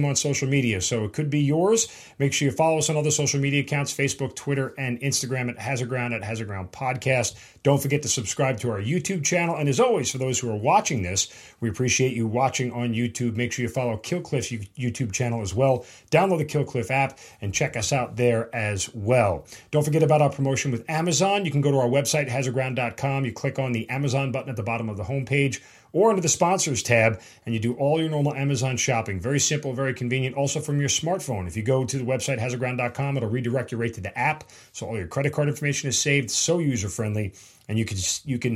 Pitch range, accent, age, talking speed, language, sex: 115-140 Hz, American, 40-59, 235 wpm, English, male